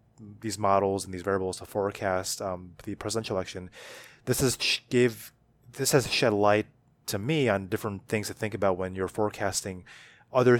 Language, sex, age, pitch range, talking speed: English, male, 20-39, 100-120 Hz, 170 wpm